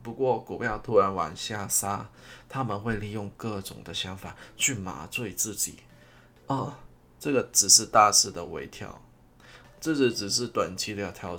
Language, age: Chinese, 20-39